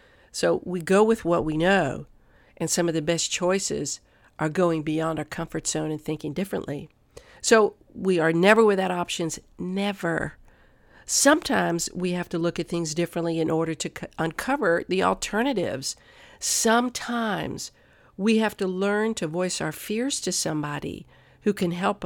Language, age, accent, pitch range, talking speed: English, 50-69, American, 155-195 Hz, 155 wpm